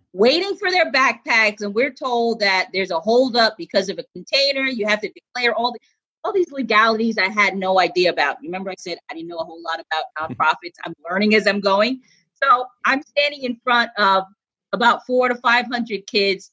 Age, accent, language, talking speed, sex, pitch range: 30-49, American, English, 210 wpm, female, 195-260 Hz